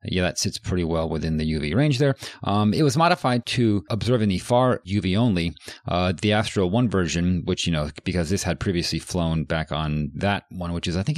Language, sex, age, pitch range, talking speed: English, male, 40-59, 85-110 Hz, 220 wpm